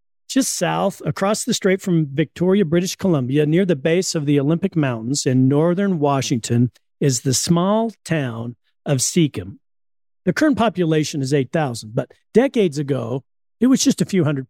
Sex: male